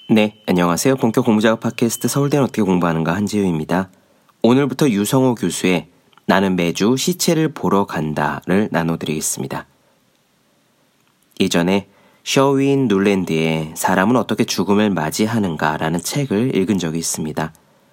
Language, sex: Korean, male